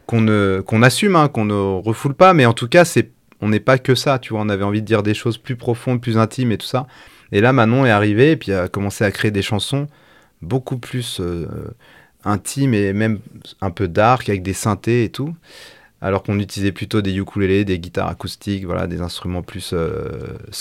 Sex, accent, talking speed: male, French, 220 wpm